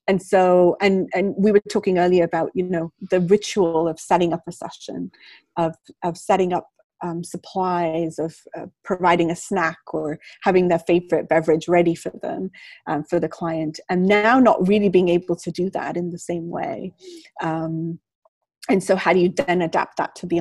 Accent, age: British, 30-49